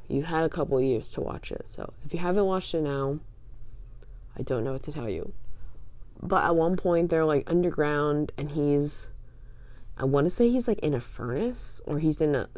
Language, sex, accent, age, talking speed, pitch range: English, female, American, 20-39, 205 wpm, 120-165 Hz